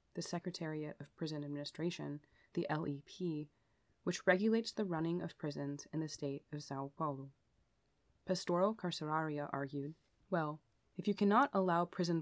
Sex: female